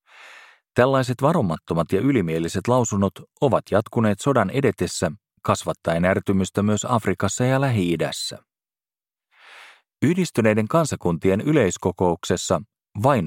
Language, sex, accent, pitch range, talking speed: Finnish, male, native, 85-115 Hz, 85 wpm